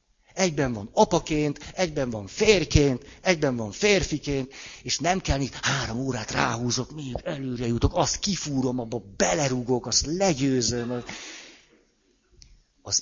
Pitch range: 100-145 Hz